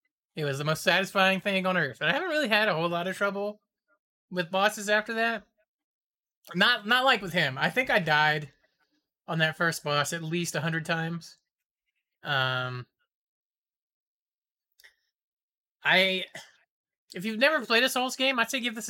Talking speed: 170 wpm